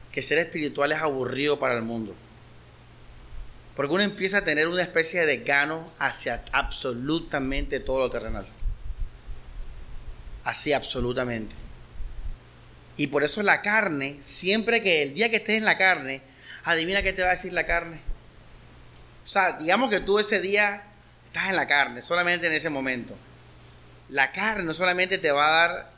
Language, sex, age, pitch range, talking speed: Spanish, male, 30-49, 105-165 Hz, 160 wpm